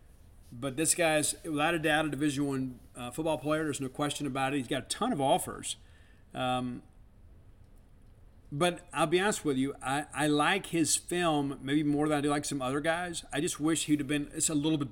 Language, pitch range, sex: English, 125-155 Hz, male